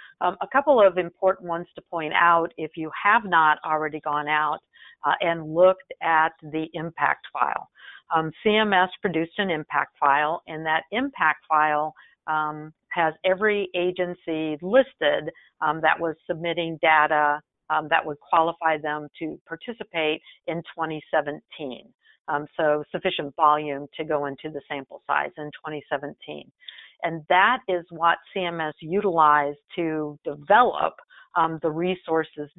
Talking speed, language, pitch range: 140 wpm, English, 150-175 Hz